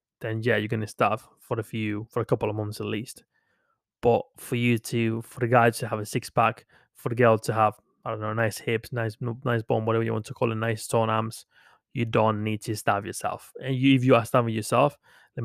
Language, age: English, 20-39